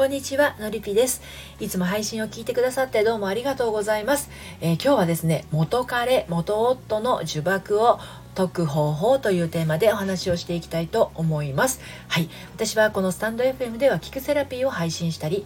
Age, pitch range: 40-59, 160-220 Hz